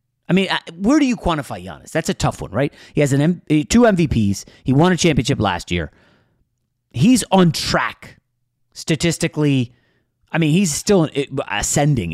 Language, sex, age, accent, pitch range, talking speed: English, male, 30-49, American, 110-150 Hz, 165 wpm